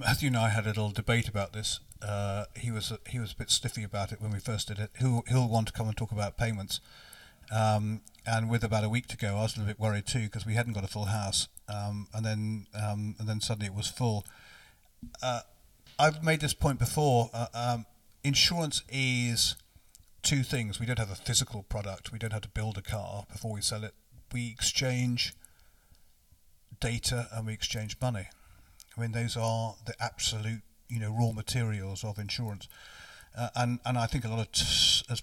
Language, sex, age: English, male, 50-69